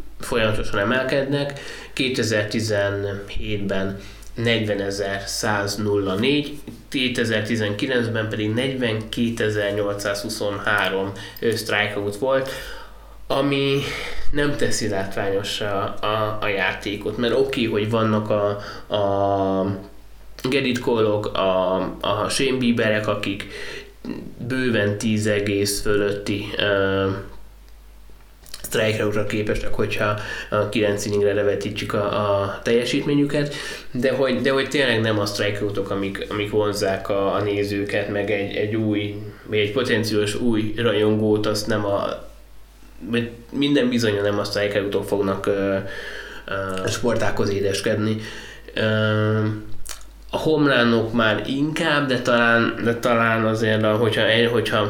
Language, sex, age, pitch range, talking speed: Hungarian, male, 20-39, 100-115 Hz, 100 wpm